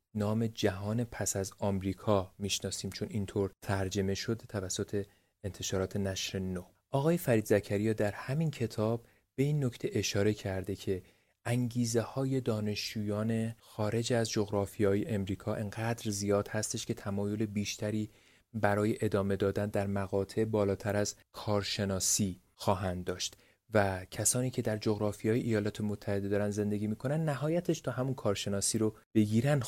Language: Persian